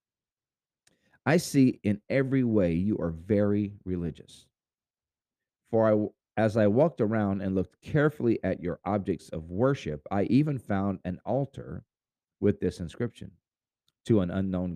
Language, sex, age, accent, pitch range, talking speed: English, male, 40-59, American, 90-125 Hz, 135 wpm